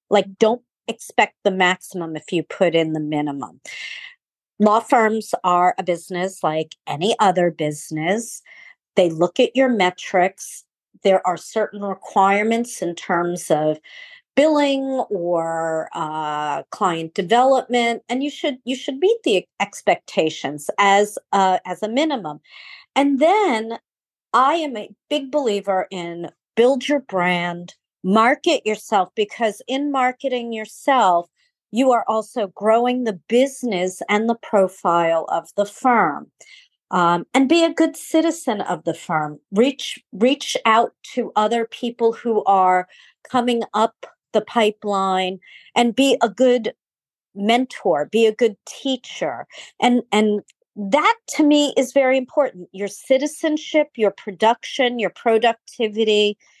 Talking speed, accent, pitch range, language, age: 130 wpm, American, 185-255 Hz, English, 40-59